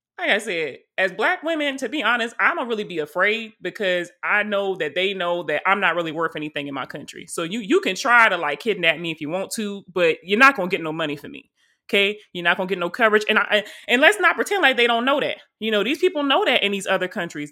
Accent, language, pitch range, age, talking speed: American, English, 160-215 Hz, 20-39, 280 wpm